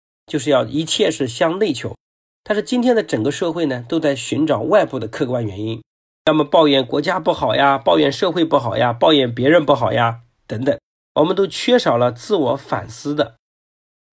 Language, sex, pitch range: Chinese, male, 115-160 Hz